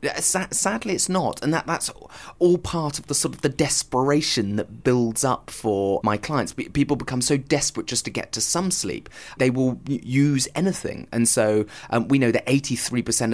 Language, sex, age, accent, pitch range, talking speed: English, male, 30-49, British, 105-125 Hz, 195 wpm